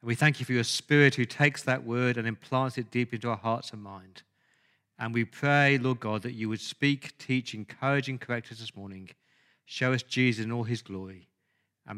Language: English